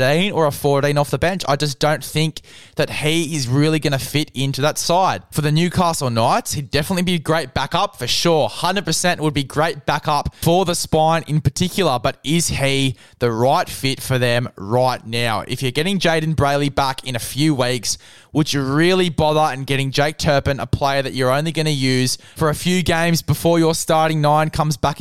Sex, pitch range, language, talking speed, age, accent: male, 135-170 Hz, English, 210 wpm, 20-39, Australian